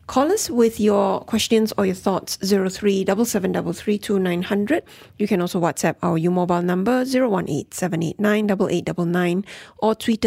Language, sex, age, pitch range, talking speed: English, female, 30-49, 180-225 Hz, 110 wpm